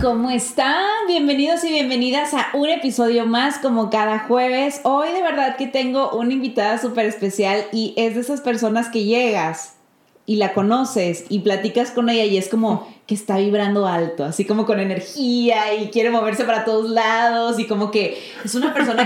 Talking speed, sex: 185 wpm, female